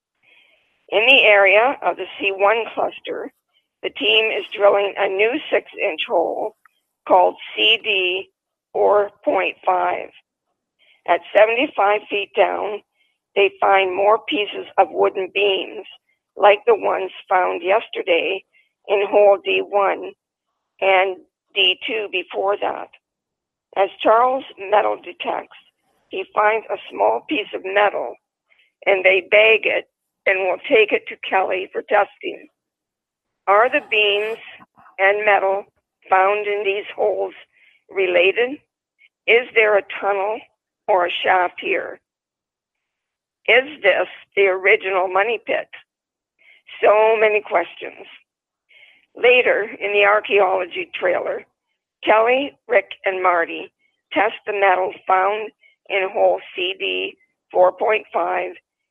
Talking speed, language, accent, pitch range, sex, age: 110 wpm, English, American, 195-270 Hz, female, 50-69